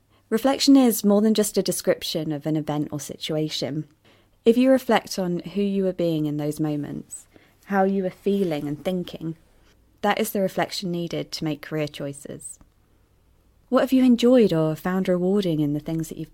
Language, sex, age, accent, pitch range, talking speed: English, female, 30-49, British, 150-210 Hz, 185 wpm